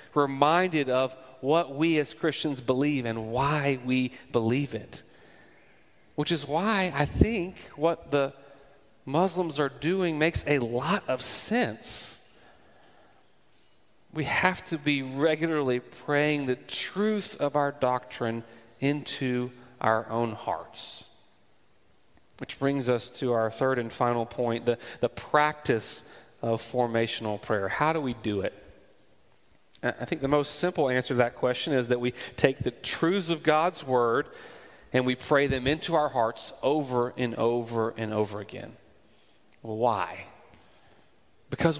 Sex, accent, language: male, American, English